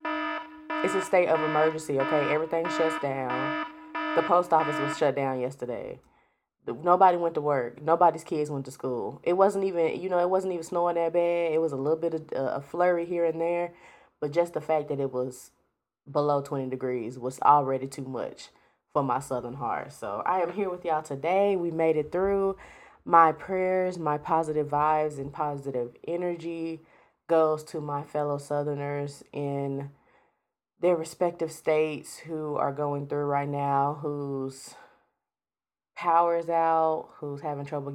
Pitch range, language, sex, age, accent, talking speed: 140-170 Hz, English, female, 20-39, American, 170 wpm